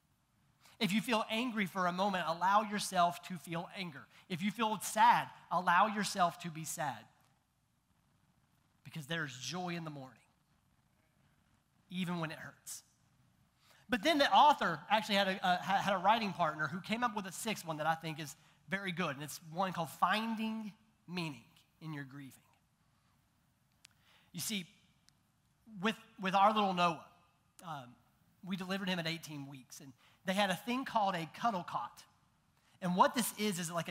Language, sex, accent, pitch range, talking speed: English, male, American, 160-205 Hz, 165 wpm